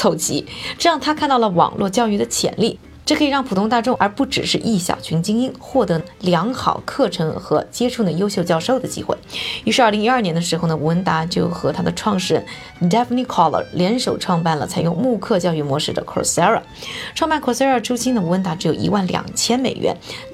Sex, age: female, 20-39